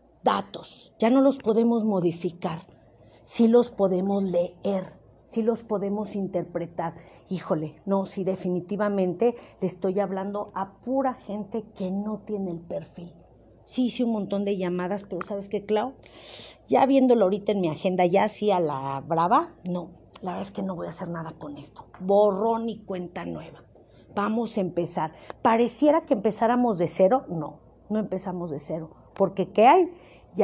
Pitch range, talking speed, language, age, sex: 180-230 Hz, 165 wpm, Spanish, 40-59, female